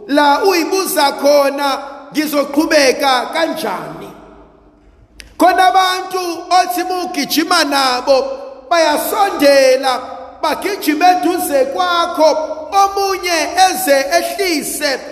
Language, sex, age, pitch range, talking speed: English, male, 50-69, 260-350 Hz, 70 wpm